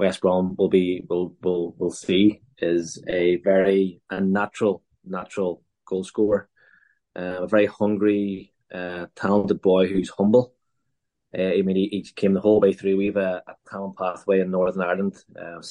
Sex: male